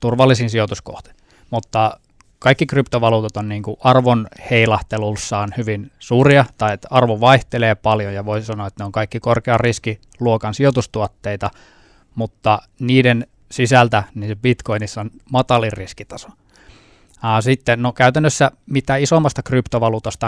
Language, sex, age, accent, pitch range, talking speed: Finnish, male, 20-39, native, 105-120 Hz, 120 wpm